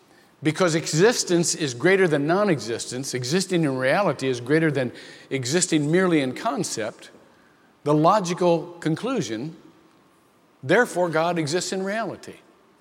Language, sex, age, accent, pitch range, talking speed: English, male, 50-69, American, 130-180 Hz, 110 wpm